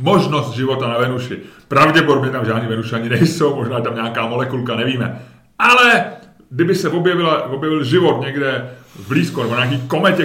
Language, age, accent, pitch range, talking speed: Czech, 30-49, native, 130-165 Hz, 165 wpm